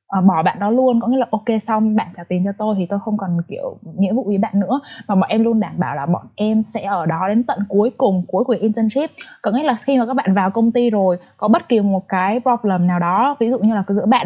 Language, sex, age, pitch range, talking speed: Vietnamese, female, 20-39, 185-230 Hz, 285 wpm